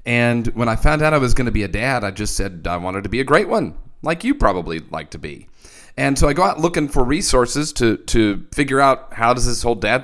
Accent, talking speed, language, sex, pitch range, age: American, 270 wpm, English, male, 110-135 Hz, 40-59